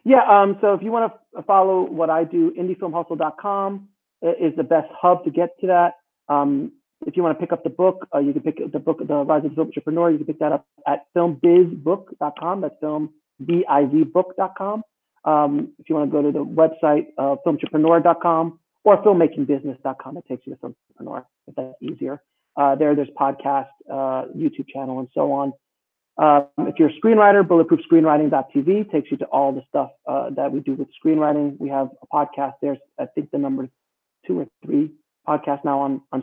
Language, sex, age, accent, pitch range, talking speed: English, male, 40-59, American, 140-185 Hz, 195 wpm